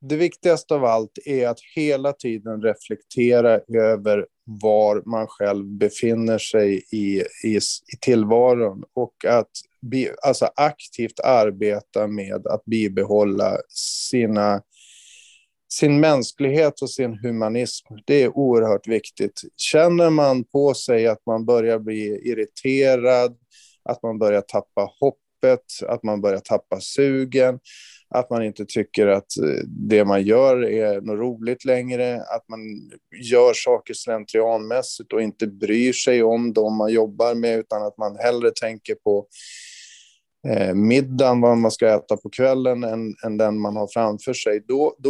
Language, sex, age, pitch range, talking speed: Swedish, male, 30-49, 110-150 Hz, 135 wpm